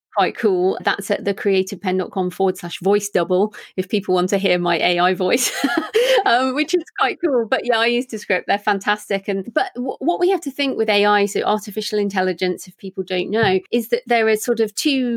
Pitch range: 185-225 Hz